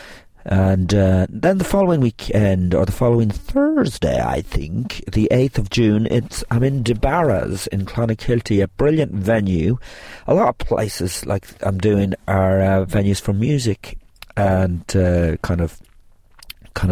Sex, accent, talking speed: male, British, 150 wpm